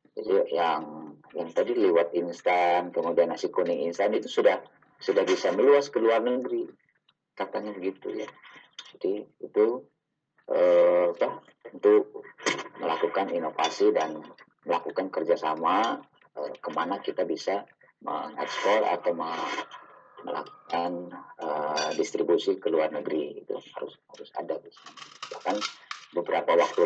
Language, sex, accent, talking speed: Indonesian, male, native, 110 wpm